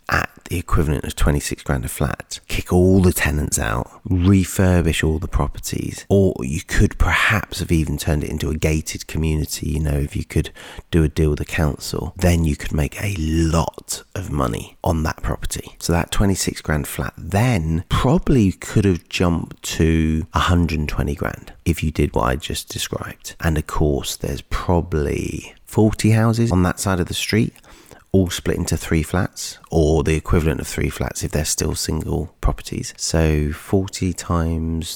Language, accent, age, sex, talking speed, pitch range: English, British, 40-59, male, 175 wpm, 75-90 Hz